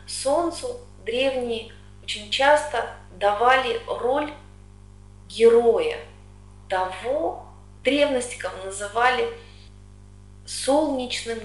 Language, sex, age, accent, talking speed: Russian, female, 30-49, native, 65 wpm